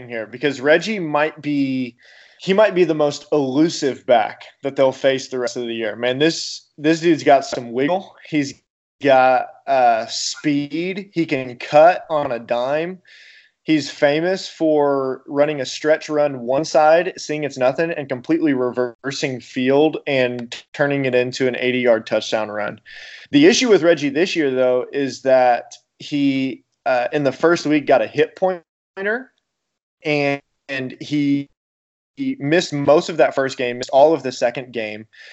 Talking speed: 165 wpm